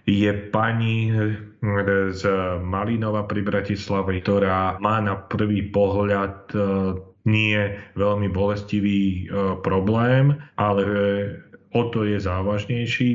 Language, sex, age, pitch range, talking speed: Slovak, male, 40-59, 95-105 Hz, 90 wpm